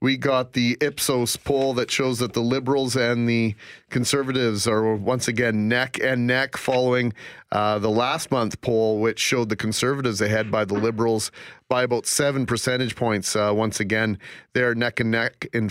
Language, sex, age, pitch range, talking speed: English, male, 40-59, 110-140 Hz, 175 wpm